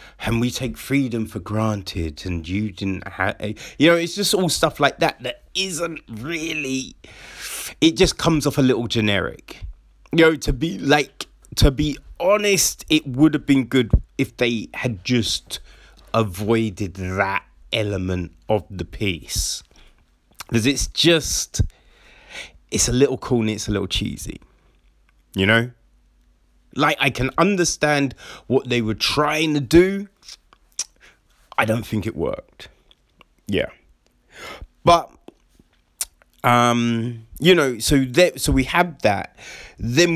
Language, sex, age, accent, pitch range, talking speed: English, male, 30-49, British, 100-145 Hz, 135 wpm